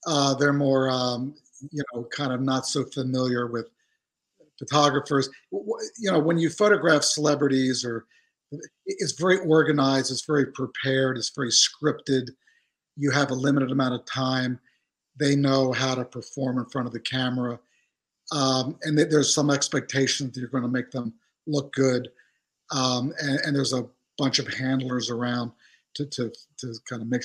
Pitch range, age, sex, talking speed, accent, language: 125-155 Hz, 50-69, male, 170 wpm, American, Italian